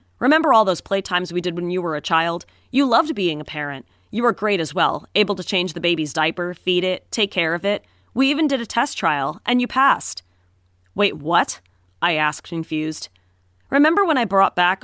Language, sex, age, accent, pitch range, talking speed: English, female, 30-49, American, 150-195 Hz, 210 wpm